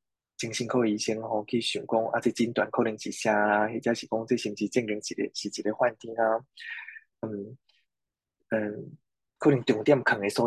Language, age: Chinese, 20-39